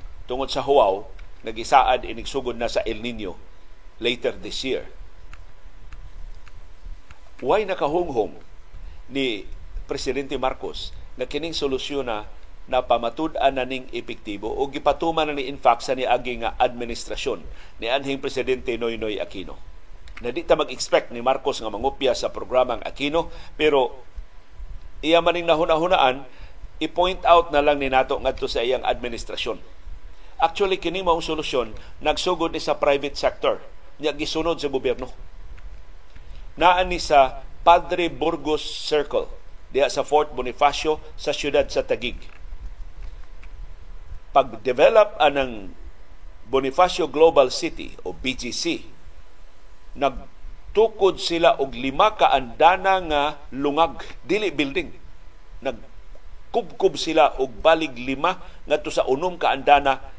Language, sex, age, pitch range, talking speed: Filipino, male, 50-69, 115-165 Hz, 120 wpm